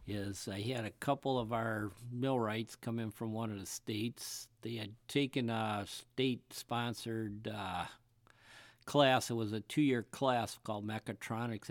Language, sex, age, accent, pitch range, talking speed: English, male, 50-69, American, 100-120 Hz, 150 wpm